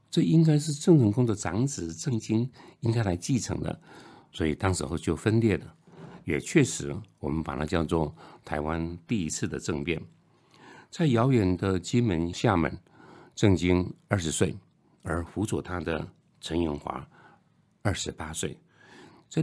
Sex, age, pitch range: male, 60-79, 80-115 Hz